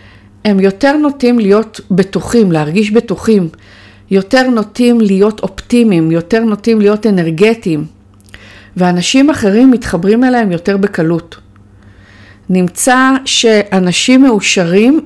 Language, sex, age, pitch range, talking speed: Hebrew, female, 50-69, 175-235 Hz, 95 wpm